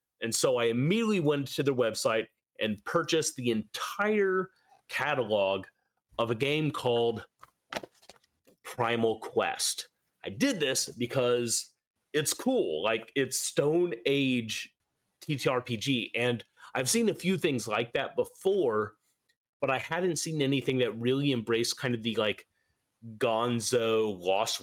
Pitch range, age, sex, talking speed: 110-150 Hz, 30-49, male, 130 wpm